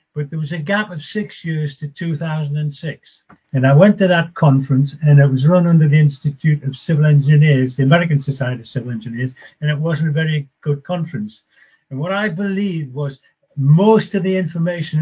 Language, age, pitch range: English, 50-69, 140-175 Hz